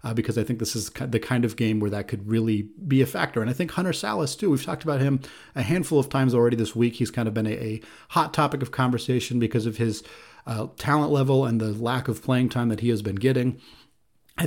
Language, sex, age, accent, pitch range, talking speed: English, male, 30-49, American, 115-145 Hz, 255 wpm